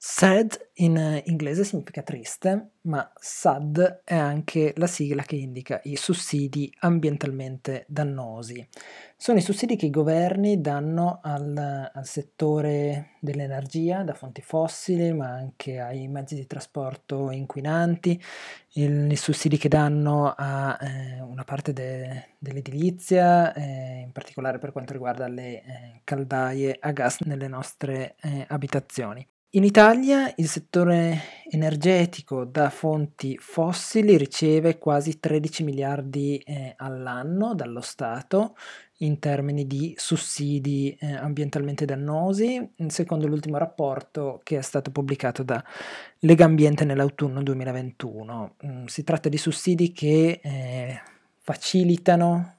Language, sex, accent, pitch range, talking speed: Italian, male, native, 135-165 Hz, 120 wpm